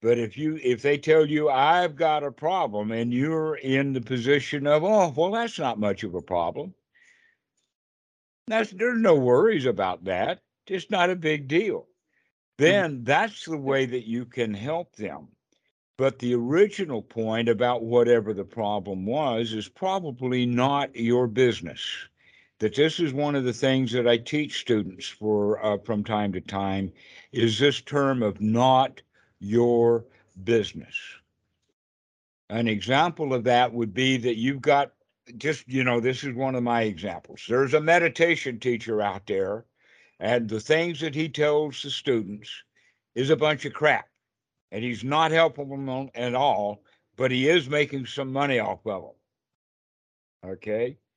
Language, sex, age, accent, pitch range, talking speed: English, male, 60-79, American, 115-155 Hz, 160 wpm